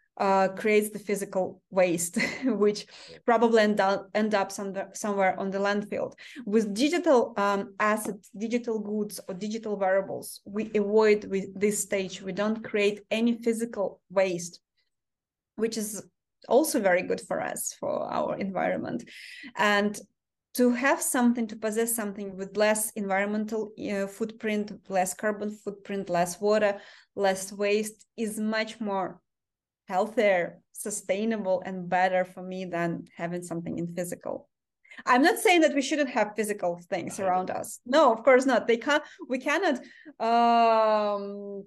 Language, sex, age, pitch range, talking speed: English, female, 20-39, 195-230 Hz, 145 wpm